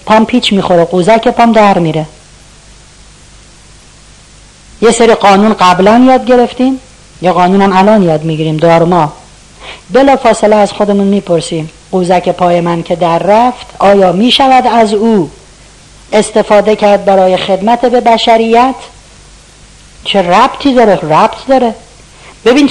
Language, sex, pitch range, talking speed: Persian, female, 180-235 Hz, 125 wpm